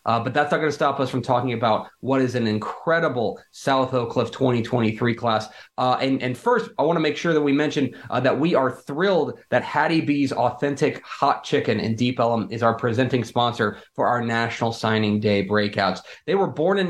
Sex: male